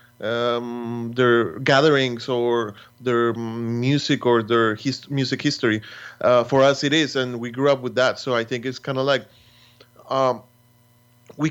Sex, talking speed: male, 160 wpm